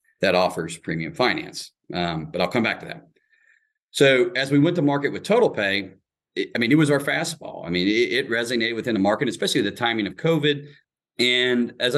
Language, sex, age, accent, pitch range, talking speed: English, male, 40-59, American, 100-145 Hz, 210 wpm